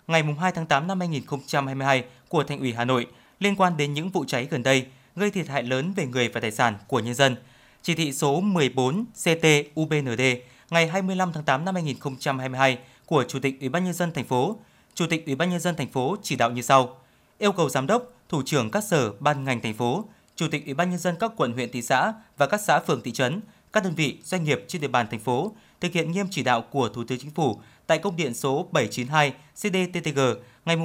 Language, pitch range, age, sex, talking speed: Vietnamese, 130-170 Hz, 20-39, male, 230 wpm